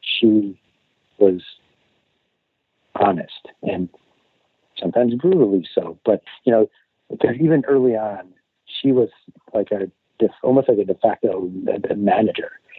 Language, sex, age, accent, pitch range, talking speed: English, male, 50-69, American, 95-120 Hz, 110 wpm